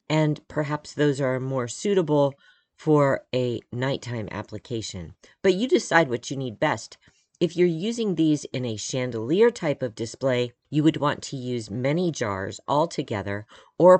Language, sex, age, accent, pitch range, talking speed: English, female, 40-59, American, 125-170 Hz, 160 wpm